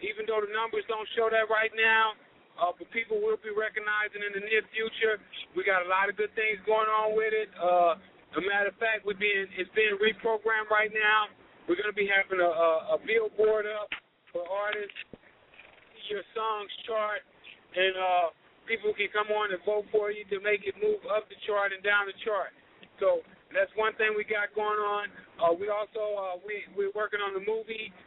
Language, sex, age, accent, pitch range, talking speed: English, male, 50-69, American, 195-215 Hz, 205 wpm